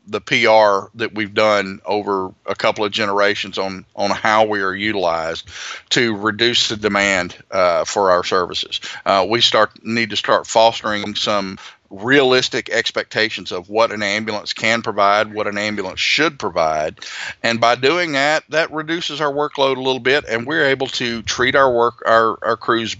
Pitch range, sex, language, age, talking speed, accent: 105-130 Hz, male, English, 40-59, 170 wpm, American